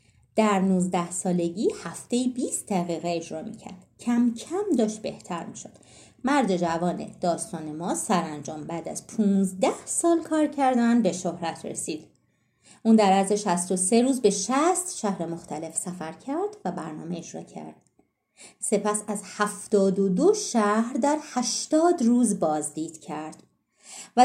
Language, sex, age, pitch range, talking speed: Persian, female, 30-49, 180-250 Hz, 130 wpm